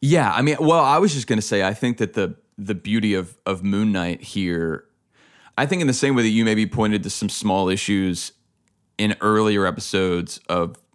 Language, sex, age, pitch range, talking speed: English, male, 30-49, 95-120 Hz, 215 wpm